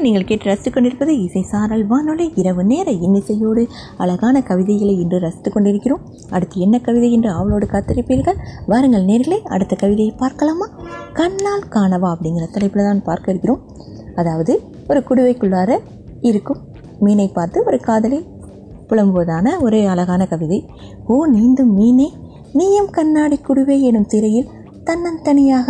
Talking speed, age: 115 wpm, 20-39